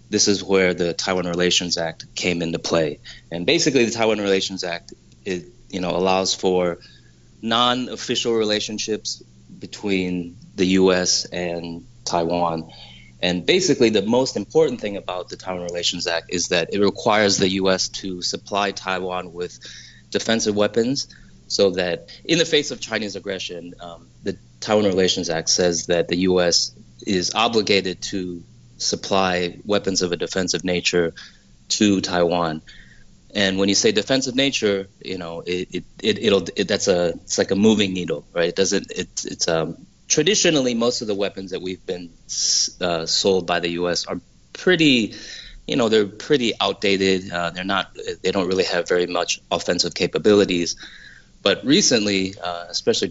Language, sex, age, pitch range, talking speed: English, male, 30-49, 85-100 Hz, 155 wpm